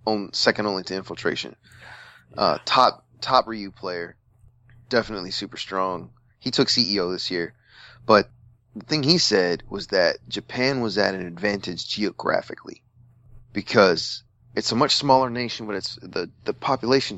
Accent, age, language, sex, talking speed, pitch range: American, 30-49, English, male, 145 wpm, 100-120 Hz